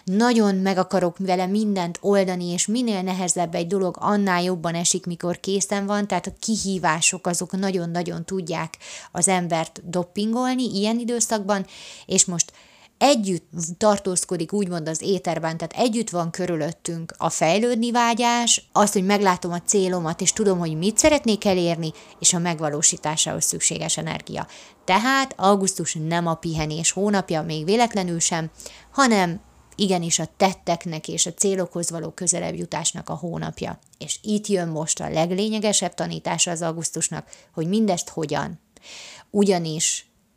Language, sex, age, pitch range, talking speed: Hungarian, female, 30-49, 170-205 Hz, 135 wpm